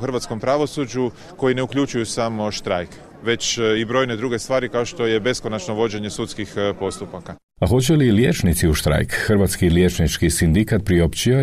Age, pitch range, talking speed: 40-59, 80-100 Hz, 150 wpm